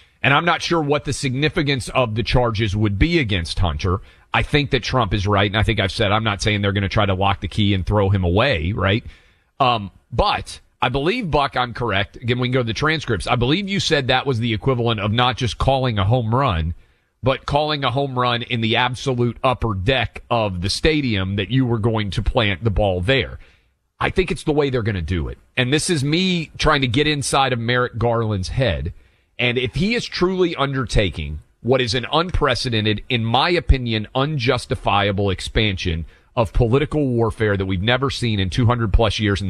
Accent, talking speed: American, 215 wpm